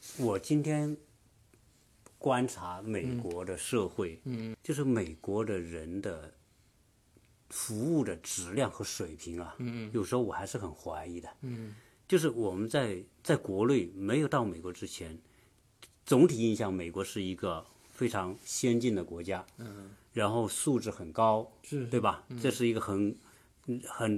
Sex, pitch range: male, 95-125 Hz